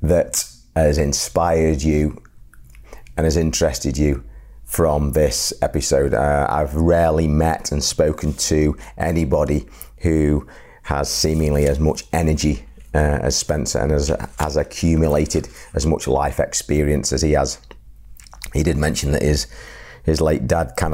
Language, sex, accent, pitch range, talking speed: English, male, British, 75-80 Hz, 140 wpm